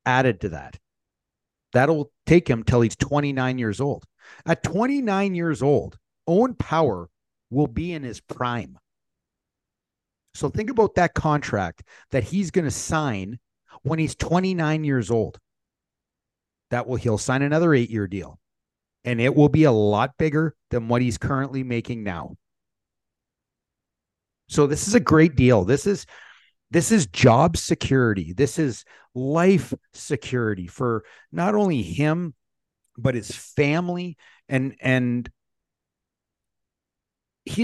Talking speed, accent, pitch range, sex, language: 130 wpm, American, 110-155 Hz, male, English